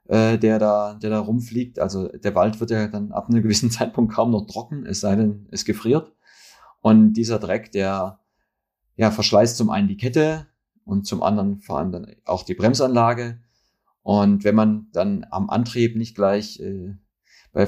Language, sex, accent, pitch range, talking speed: German, male, German, 100-115 Hz, 180 wpm